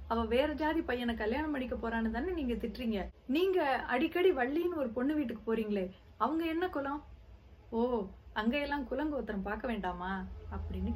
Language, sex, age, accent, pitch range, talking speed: Tamil, female, 30-49, native, 210-270 Hz, 150 wpm